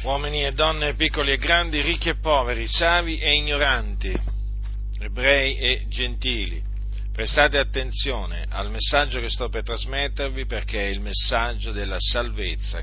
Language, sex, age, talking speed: Italian, male, 50-69, 135 wpm